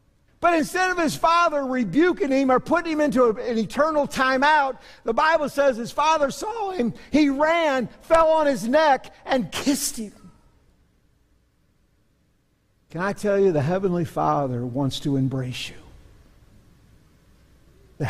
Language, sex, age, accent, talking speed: English, male, 50-69, American, 140 wpm